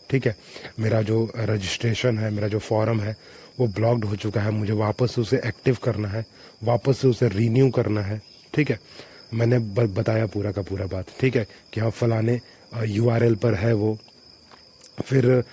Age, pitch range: 30-49, 105-120 Hz